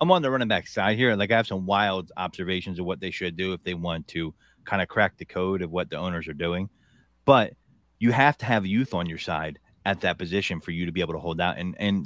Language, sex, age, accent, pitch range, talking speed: English, male, 30-49, American, 95-130 Hz, 275 wpm